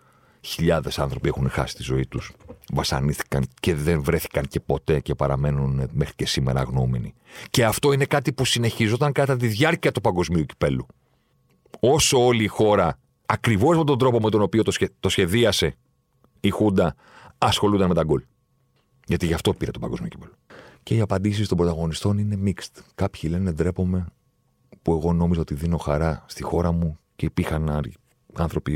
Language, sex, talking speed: Greek, male, 165 wpm